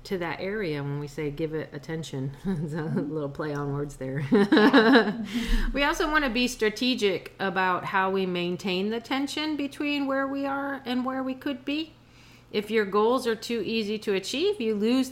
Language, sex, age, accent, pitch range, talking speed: English, female, 40-59, American, 175-225 Hz, 185 wpm